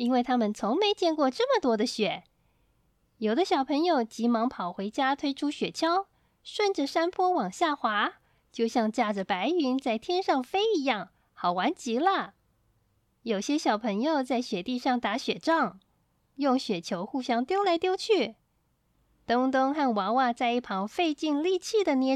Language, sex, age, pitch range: Chinese, female, 20-39, 225-325 Hz